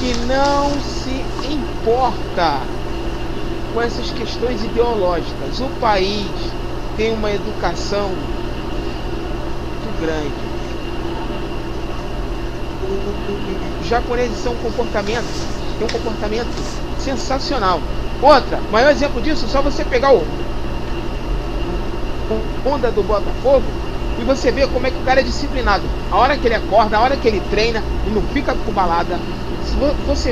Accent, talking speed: Brazilian, 120 wpm